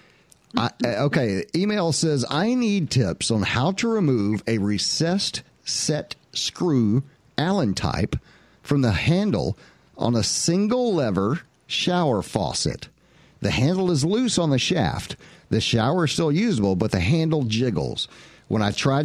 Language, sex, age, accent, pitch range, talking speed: English, male, 50-69, American, 105-150 Hz, 140 wpm